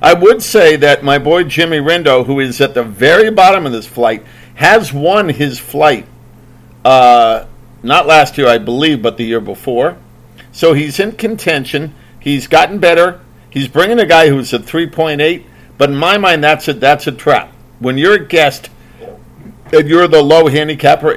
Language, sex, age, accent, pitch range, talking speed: English, male, 50-69, American, 125-165 Hz, 175 wpm